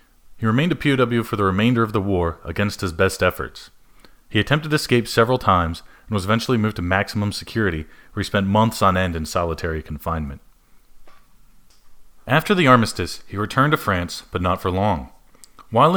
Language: English